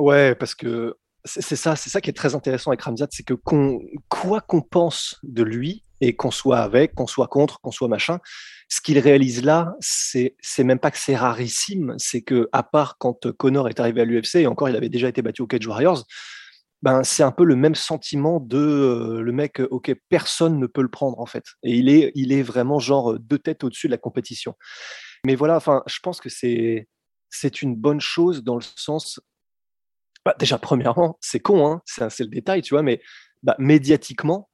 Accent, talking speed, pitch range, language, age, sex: French, 215 wpm, 125-150 Hz, French, 20-39, male